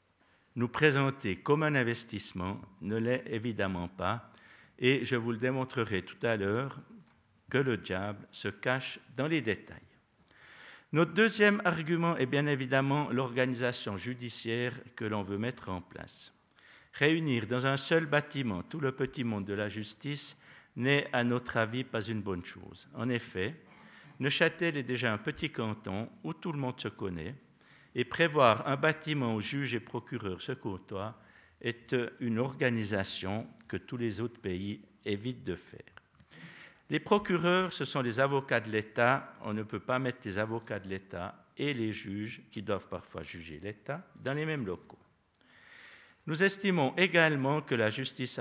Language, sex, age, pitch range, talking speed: French, male, 60-79, 105-140 Hz, 160 wpm